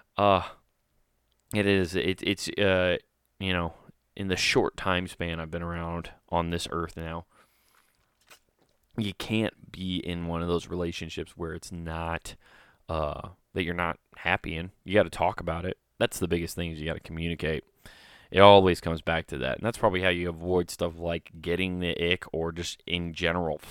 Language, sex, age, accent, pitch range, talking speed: English, male, 20-39, American, 85-110 Hz, 180 wpm